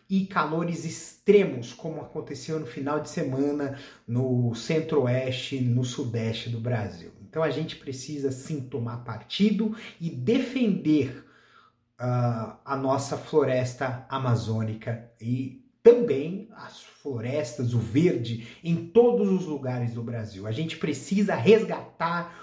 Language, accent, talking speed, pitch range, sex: Portuguese, Brazilian, 120 wpm, 130-195 Hz, male